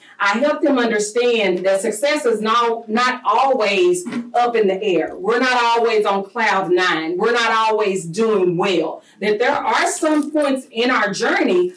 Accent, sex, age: American, female, 40-59